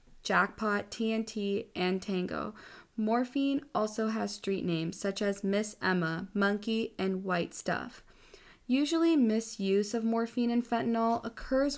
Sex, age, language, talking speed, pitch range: female, 20-39, English, 120 wpm, 195-230 Hz